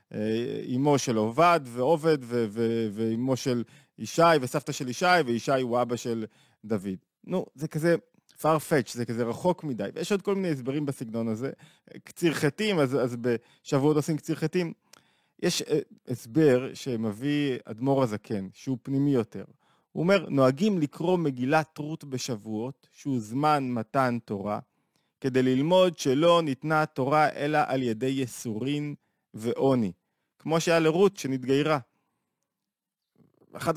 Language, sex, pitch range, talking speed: Hebrew, male, 120-155 Hz, 135 wpm